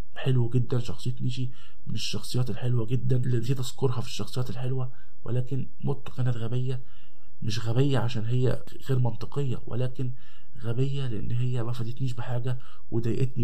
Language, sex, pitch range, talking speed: Arabic, male, 110-130 Hz, 145 wpm